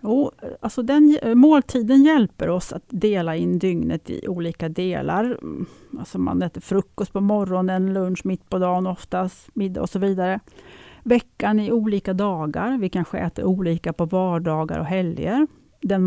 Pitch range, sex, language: 185-250 Hz, female, Swedish